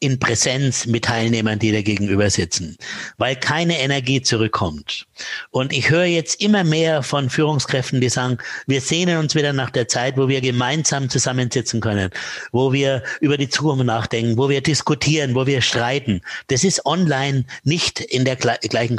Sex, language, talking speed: male, German, 170 wpm